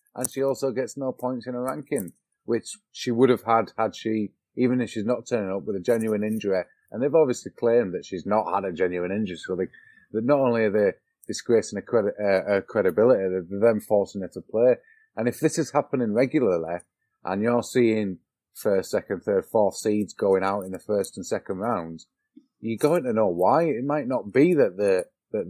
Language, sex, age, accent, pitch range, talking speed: English, male, 30-49, British, 100-135 Hz, 210 wpm